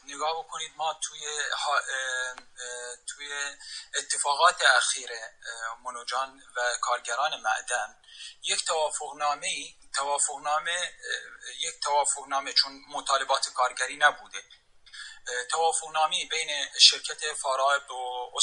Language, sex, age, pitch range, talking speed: English, male, 30-49, 140-205 Hz, 100 wpm